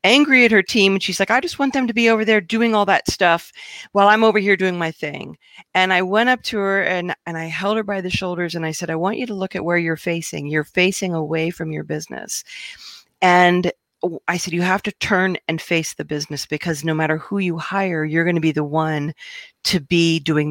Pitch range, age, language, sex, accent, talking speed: 155-195 Hz, 40-59, English, female, American, 245 wpm